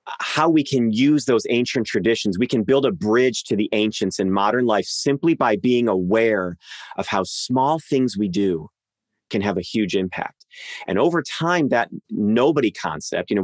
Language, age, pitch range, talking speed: English, 30-49, 105-130 Hz, 185 wpm